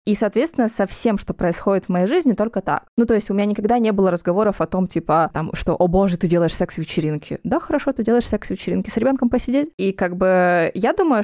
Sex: female